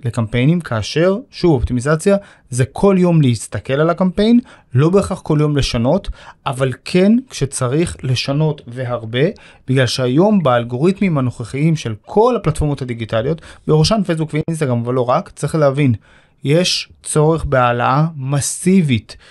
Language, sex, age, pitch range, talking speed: Hebrew, male, 30-49, 130-180 Hz, 120 wpm